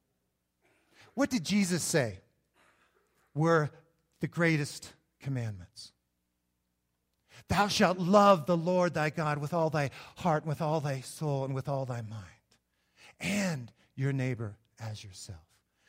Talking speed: 125 wpm